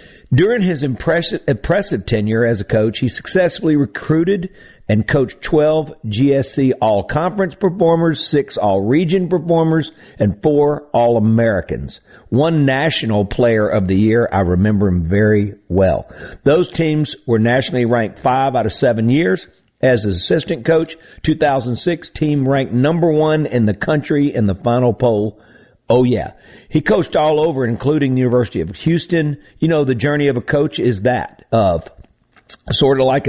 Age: 50-69